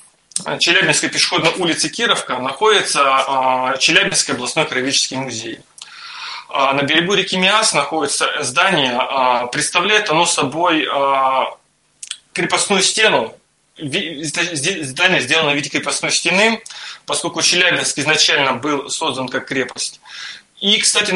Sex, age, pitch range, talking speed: male, 20-39, 135-175 Hz, 100 wpm